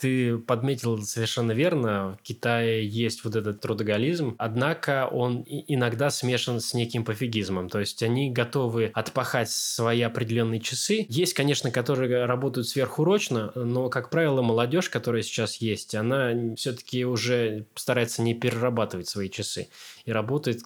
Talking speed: 135 wpm